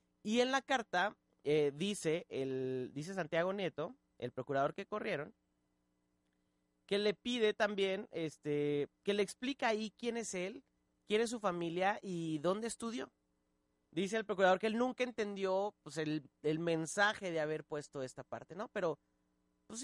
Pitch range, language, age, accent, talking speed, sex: 135-205 Hz, Spanish, 30-49, Mexican, 155 wpm, male